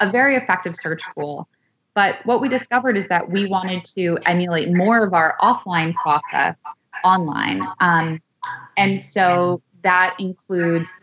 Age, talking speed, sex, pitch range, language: 20-39, 140 wpm, female, 165-195 Hz, English